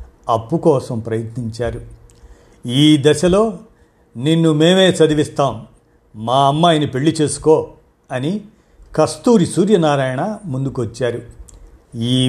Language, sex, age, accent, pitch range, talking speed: Telugu, male, 50-69, native, 120-155 Hz, 85 wpm